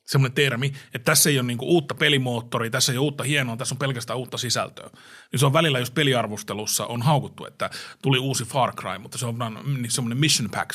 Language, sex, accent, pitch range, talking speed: Finnish, male, native, 125-155 Hz, 210 wpm